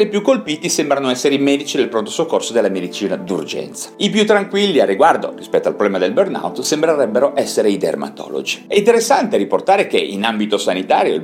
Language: Italian